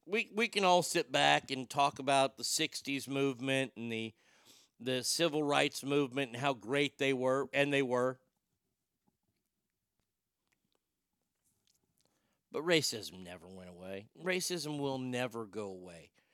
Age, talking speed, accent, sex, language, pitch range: 50-69, 130 wpm, American, male, English, 135-180 Hz